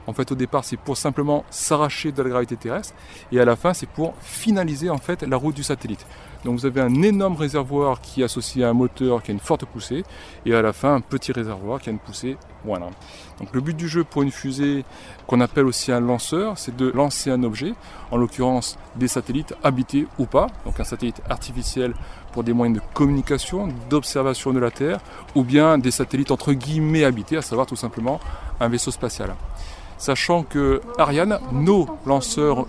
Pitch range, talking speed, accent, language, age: 120-150 Hz, 205 wpm, French, French, 30-49